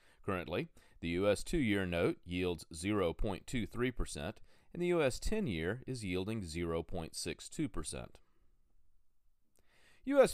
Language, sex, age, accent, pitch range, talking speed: English, male, 30-49, American, 90-145 Hz, 85 wpm